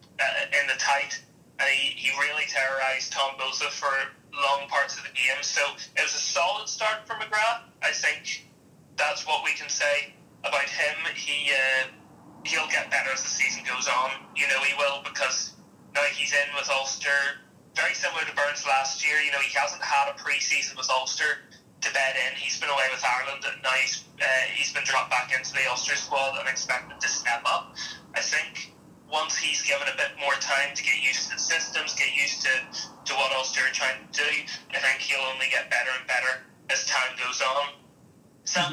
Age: 20-39